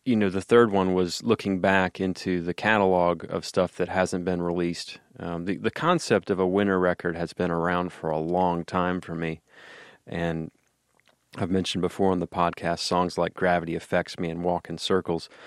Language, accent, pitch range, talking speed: English, American, 85-95 Hz, 195 wpm